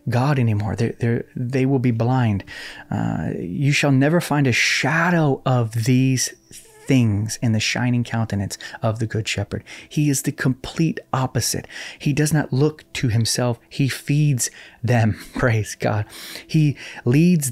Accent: American